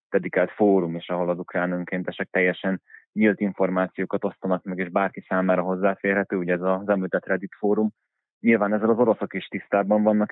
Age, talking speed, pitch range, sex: 20-39, 165 wpm, 90-100 Hz, male